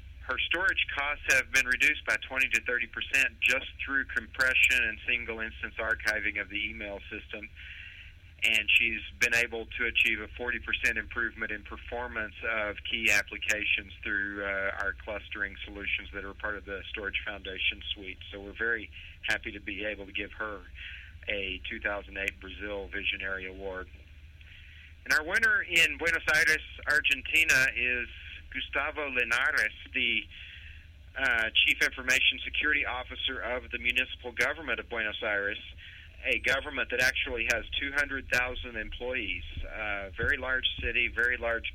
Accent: American